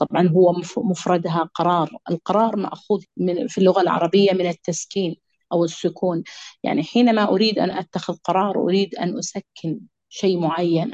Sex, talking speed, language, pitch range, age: female, 130 wpm, Arabic, 170-210 Hz, 30-49